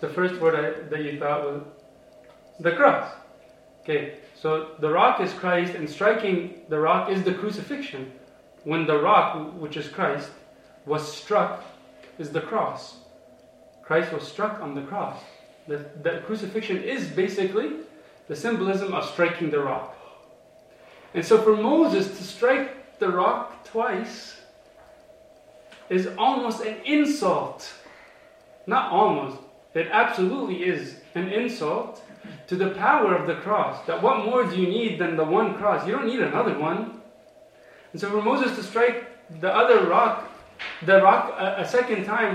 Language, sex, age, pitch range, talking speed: English, male, 30-49, 165-235 Hz, 150 wpm